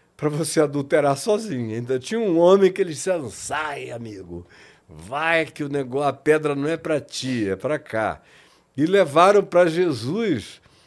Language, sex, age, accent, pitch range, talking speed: Portuguese, male, 60-79, Brazilian, 135-190 Hz, 155 wpm